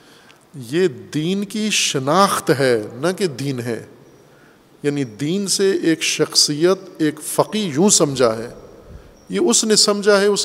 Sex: male